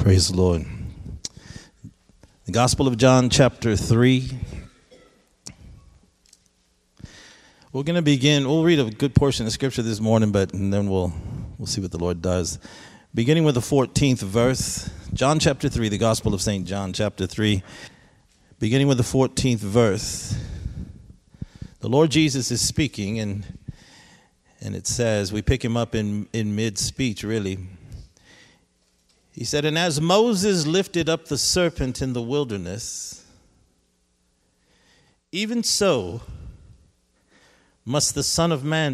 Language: English